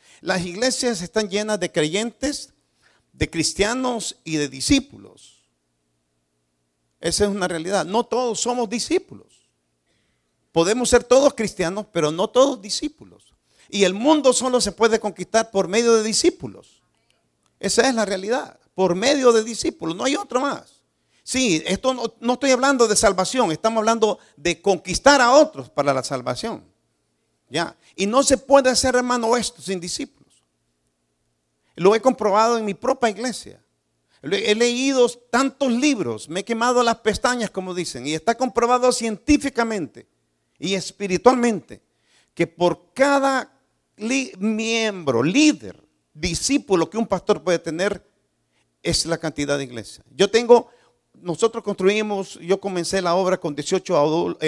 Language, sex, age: Spanish, male, 50-69